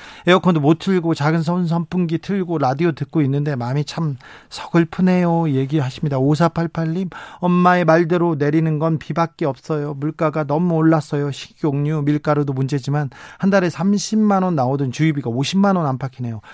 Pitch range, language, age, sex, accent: 140-180 Hz, Korean, 40-59, male, native